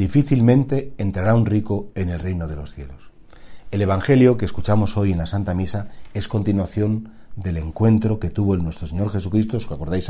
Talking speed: 185 wpm